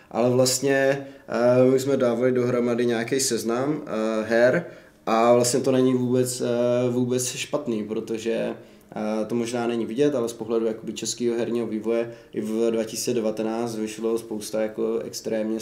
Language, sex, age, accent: Czech, male, 20-39, native